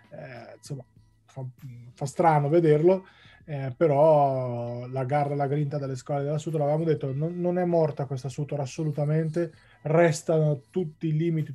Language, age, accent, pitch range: Italian, 20-39, native, 130-155 Hz